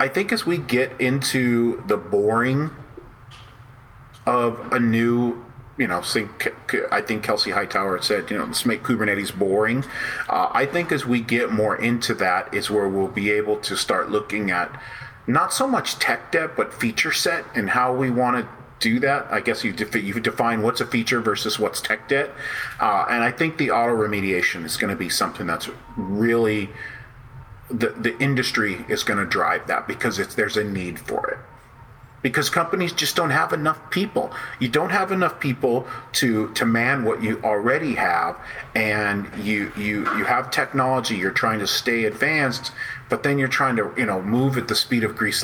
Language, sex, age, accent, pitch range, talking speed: English, male, 40-59, American, 110-130 Hz, 185 wpm